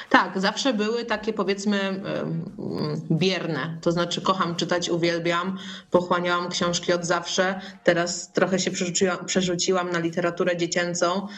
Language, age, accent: Polish, 20-39, native